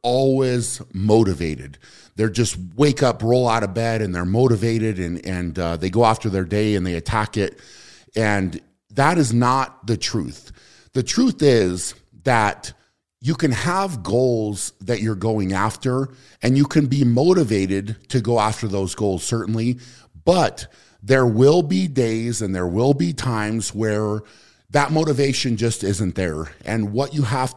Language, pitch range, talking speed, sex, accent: English, 100-130 Hz, 160 wpm, male, American